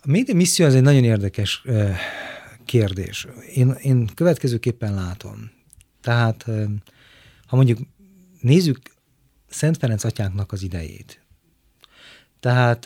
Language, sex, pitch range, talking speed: Hungarian, male, 105-135 Hz, 110 wpm